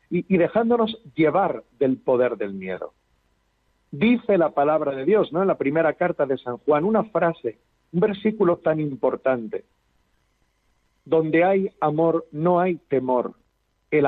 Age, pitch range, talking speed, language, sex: 50-69, 140-205 Hz, 140 wpm, Spanish, male